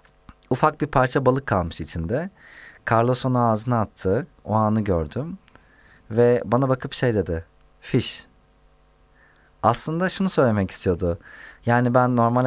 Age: 30-49